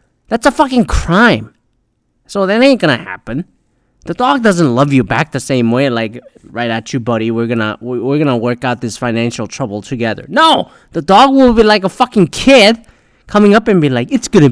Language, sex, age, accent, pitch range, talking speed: English, male, 20-39, American, 125-205 Hz, 200 wpm